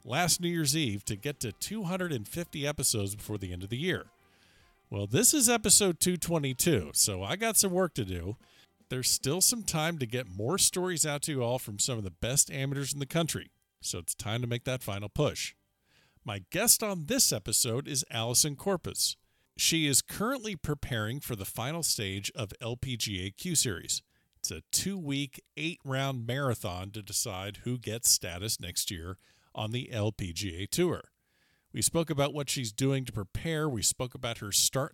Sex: male